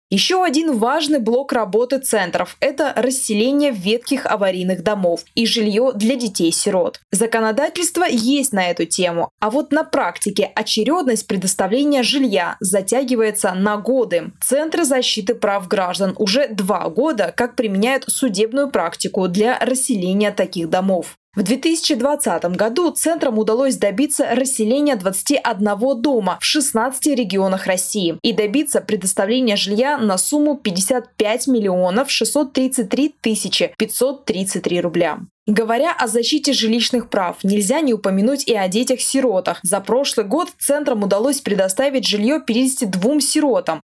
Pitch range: 205-275 Hz